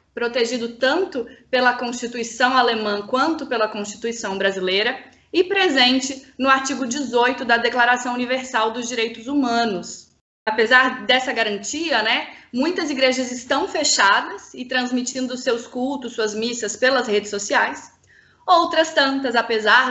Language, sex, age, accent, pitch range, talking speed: Portuguese, female, 20-39, Brazilian, 230-275 Hz, 120 wpm